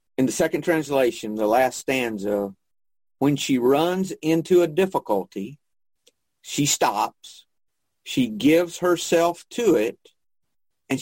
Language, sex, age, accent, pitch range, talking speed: English, male, 50-69, American, 110-155 Hz, 115 wpm